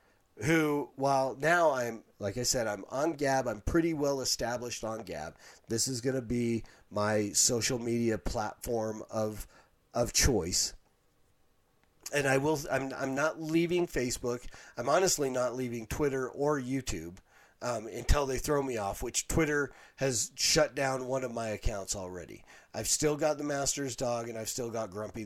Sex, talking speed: male, 165 wpm